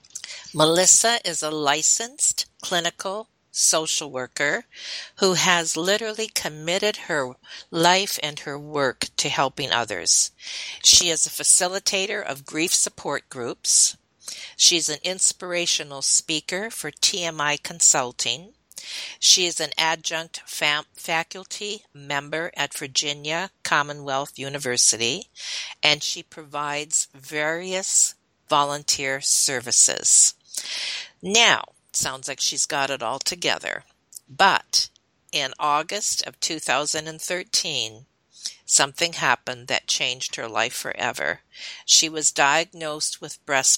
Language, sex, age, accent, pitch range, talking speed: English, female, 50-69, American, 140-175 Hz, 105 wpm